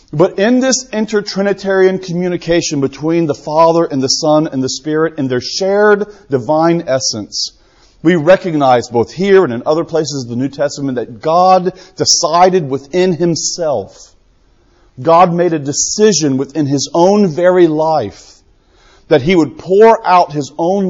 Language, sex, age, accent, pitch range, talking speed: English, male, 40-59, American, 140-185 Hz, 150 wpm